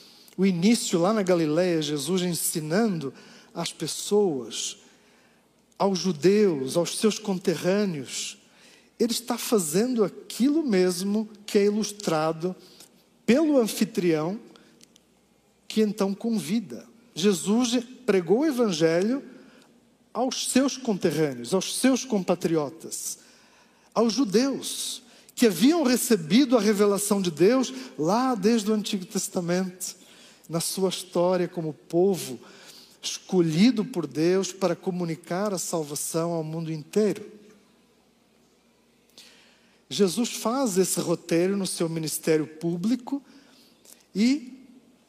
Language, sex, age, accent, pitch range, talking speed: Portuguese, male, 50-69, Brazilian, 180-230 Hz, 100 wpm